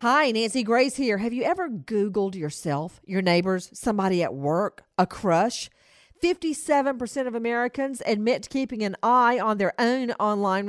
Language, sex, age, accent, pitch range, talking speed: English, female, 50-69, American, 180-250 Hz, 155 wpm